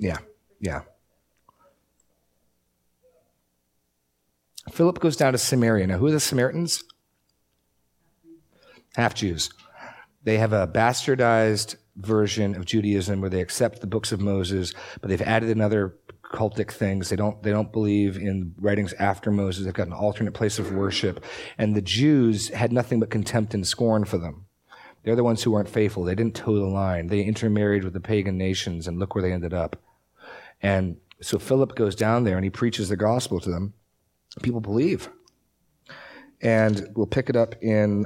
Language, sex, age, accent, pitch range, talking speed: English, male, 40-59, American, 95-115 Hz, 165 wpm